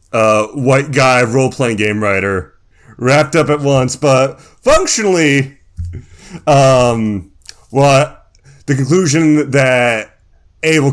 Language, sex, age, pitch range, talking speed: English, male, 30-49, 105-160 Hz, 95 wpm